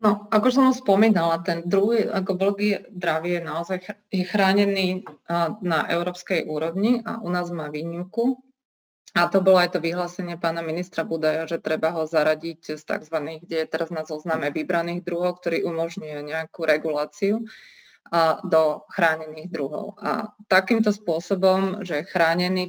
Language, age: Slovak, 20-39